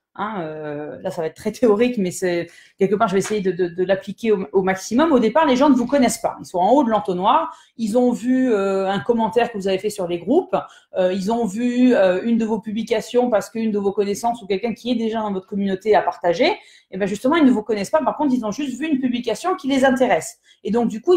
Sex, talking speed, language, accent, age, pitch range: female, 270 wpm, French, French, 30-49, 190-260 Hz